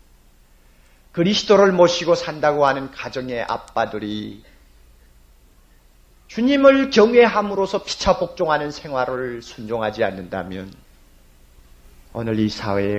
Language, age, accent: Korean, 40-59, native